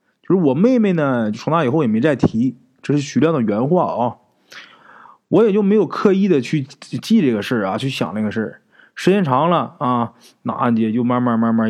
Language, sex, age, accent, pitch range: Chinese, male, 20-39, native, 115-170 Hz